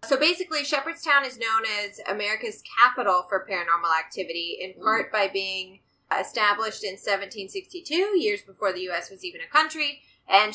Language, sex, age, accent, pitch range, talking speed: English, female, 20-39, American, 195-275 Hz, 155 wpm